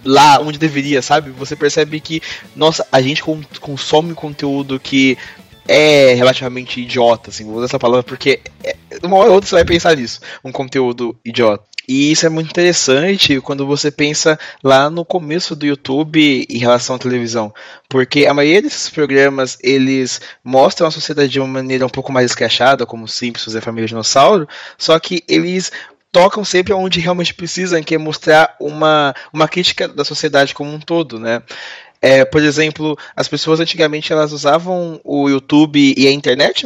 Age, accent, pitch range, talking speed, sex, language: 20-39, Brazilian, 130-165 Hz, 170 wpm, male, Portuguese